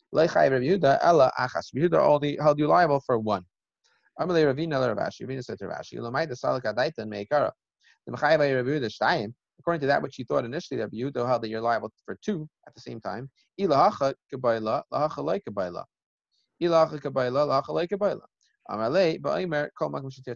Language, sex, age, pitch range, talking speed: English, male, 30-49, 130-185 Hz, 70 wpm